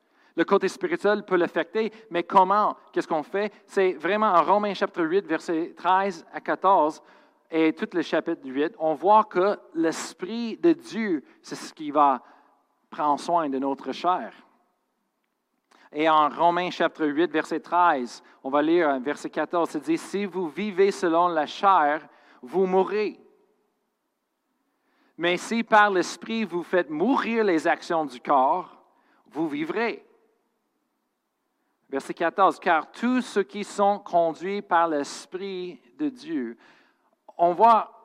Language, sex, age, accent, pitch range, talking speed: French, male, 50-69, Canadian, 165-250 Hz, 145 wpm